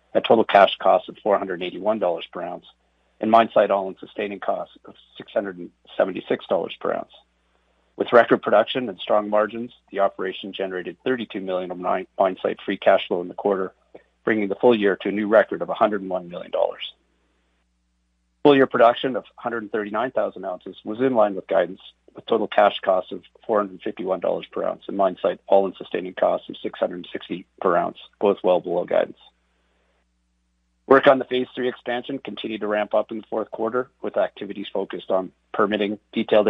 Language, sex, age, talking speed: English, male, 40-59, 170 wpm